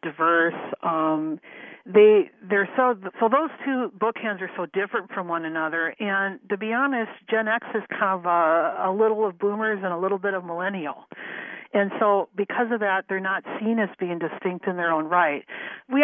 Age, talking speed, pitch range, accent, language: 50-69, 190 wpm, 165-210 Hz, American, English